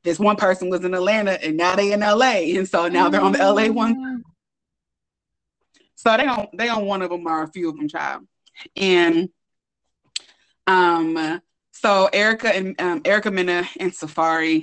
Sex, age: female, 20-39